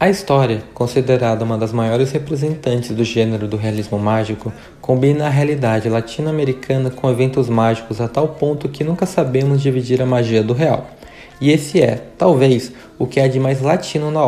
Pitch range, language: 115-150 Hz, Portuguese